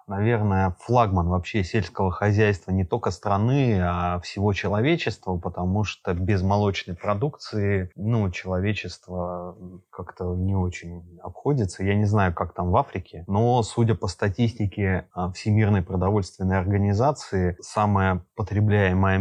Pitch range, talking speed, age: 90-110 Hz, 120 wpm, 20-39